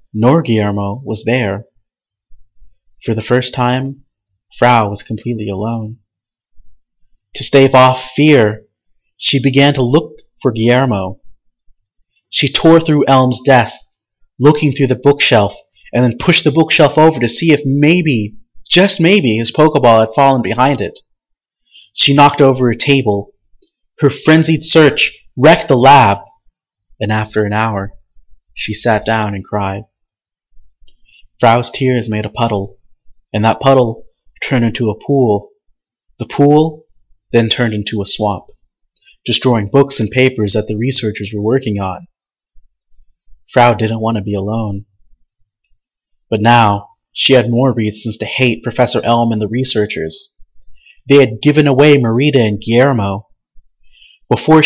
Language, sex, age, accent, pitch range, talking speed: English, male, 30-49, American, 105-135 Hz, 135 wpm